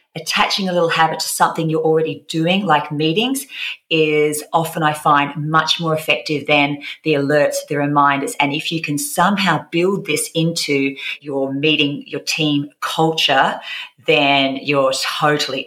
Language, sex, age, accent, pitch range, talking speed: English, female, 30-49, Australian, 140-160 Hz, 150 wpm